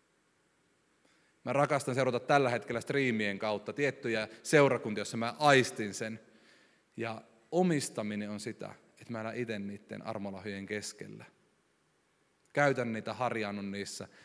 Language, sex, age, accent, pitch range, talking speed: Finnish, male, 30-49, native, 110-155 Hz, 115 wpm